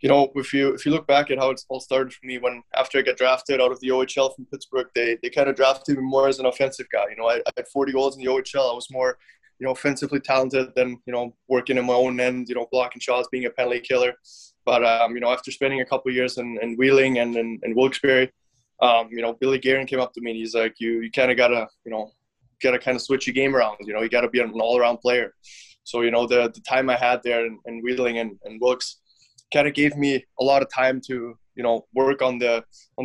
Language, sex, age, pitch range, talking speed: English, male, 20-39, 115-130 Hz, 280 wpm